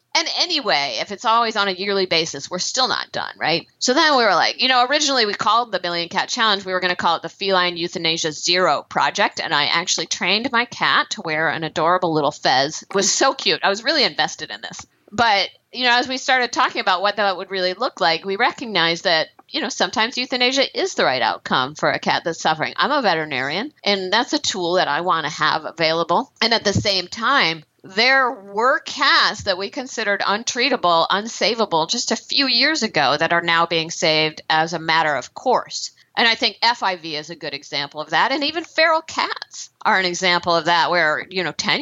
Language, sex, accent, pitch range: English, female, American, 165-240 Hz